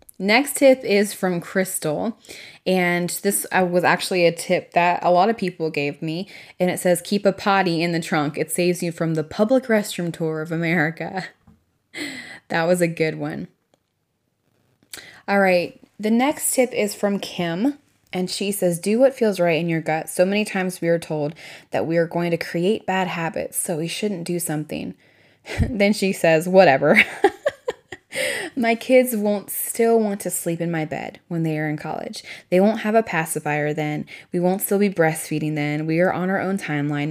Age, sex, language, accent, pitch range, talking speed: 20-39, female, English, American, 160-195 Hz, 190 wpm